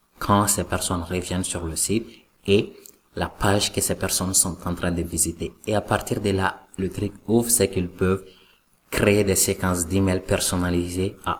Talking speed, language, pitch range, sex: 180 wpm, French, 90-100 Hz, male